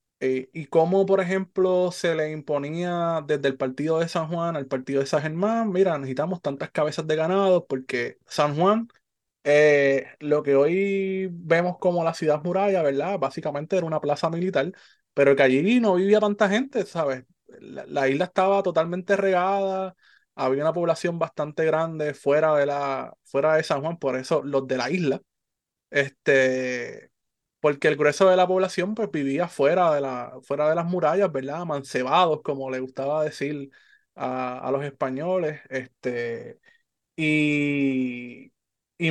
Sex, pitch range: male, 140-185 Hz